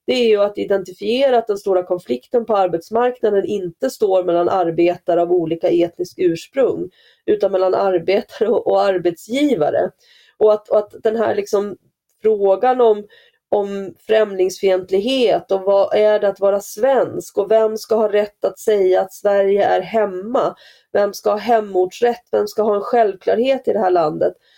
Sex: female